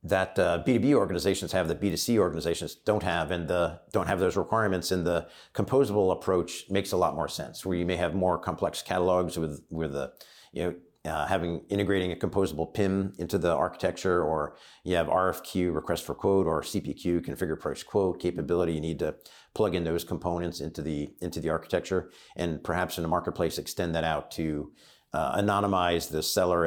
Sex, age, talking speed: male, 50-69, 185 wpm